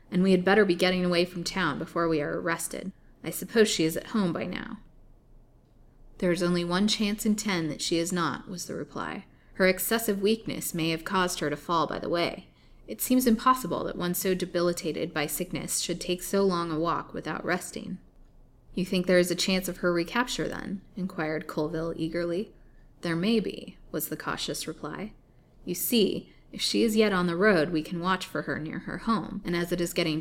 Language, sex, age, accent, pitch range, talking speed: English, female, 20-39, American, 165-195 Hz, 210 wpm